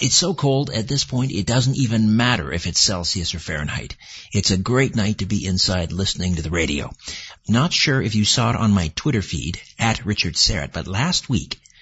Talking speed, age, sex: 215 wpm, 50-69, male